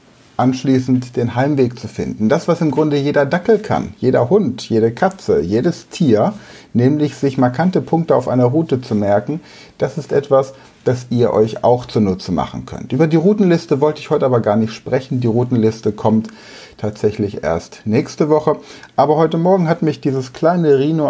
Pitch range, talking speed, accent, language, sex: 110-145 Hz, 175 wpm, German, German, male